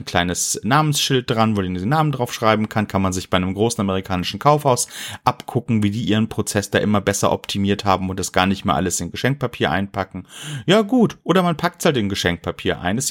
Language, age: German, 30-49